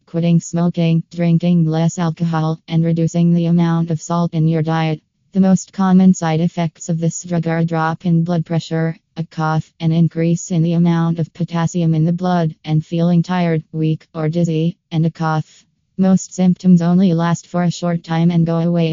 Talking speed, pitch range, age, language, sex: 190 wpm, 160-175 Hz, 20-39, English, female